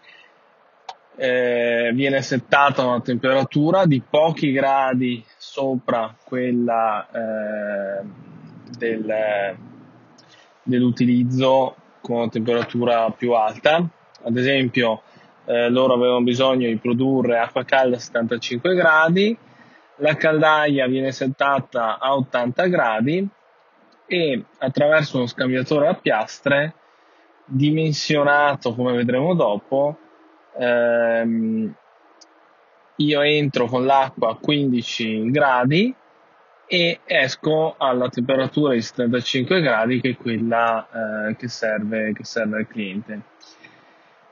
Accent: native